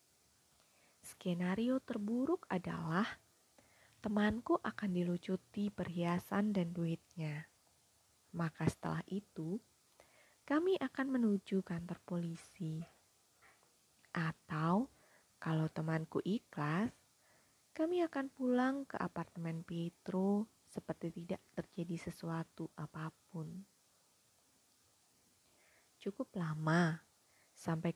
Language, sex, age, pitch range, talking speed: Indonesian, female, 20-39, 170-215 Hz, 75 wpm